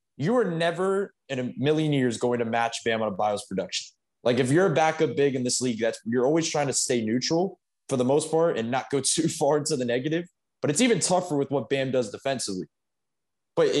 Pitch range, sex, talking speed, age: 120-160 Hz, male, 230 wpm, 20-39